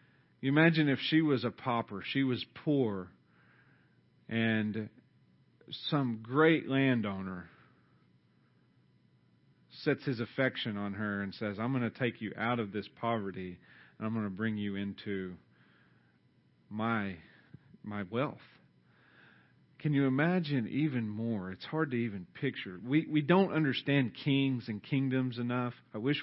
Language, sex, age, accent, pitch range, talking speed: English, male, 40-59, American, 100-135 Hz, 135 wpm